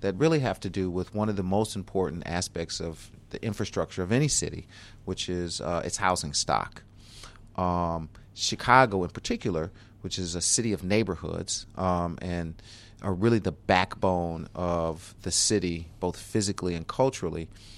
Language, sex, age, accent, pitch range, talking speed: English, male, 30-49, American, 90-105 Hz, 160 wpm